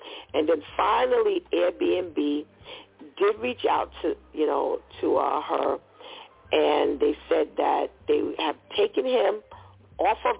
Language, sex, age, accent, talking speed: English, female, 50-69, American, 135 wpm